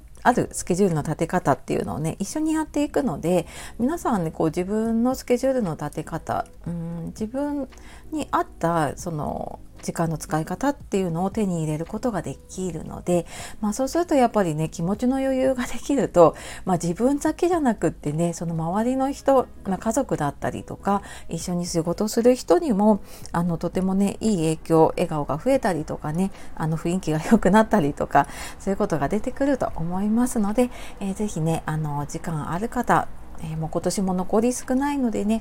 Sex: female